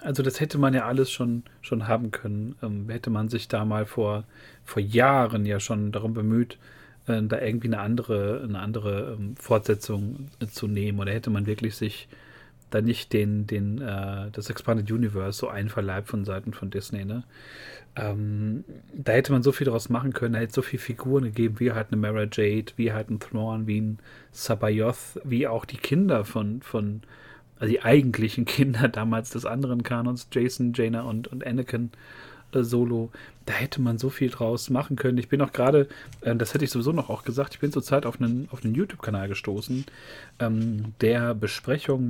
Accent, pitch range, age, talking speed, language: German, 110-130 Hz, 40-59, 190 wpm, German